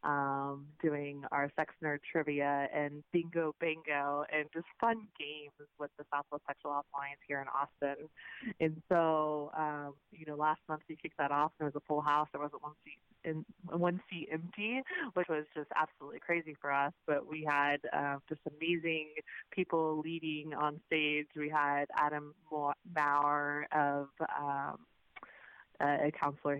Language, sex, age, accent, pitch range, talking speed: English, female, 20-39, American, 145-160 Hz, 160 wpm